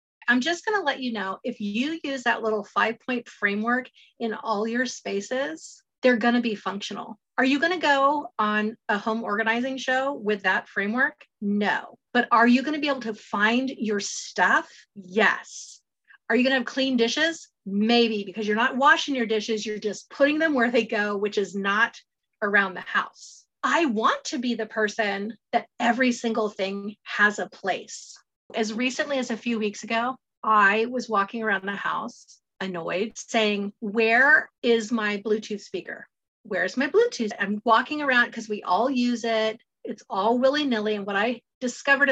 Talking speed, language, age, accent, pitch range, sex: 175 wpm, English, 30-49, American, 210-260 Hz, female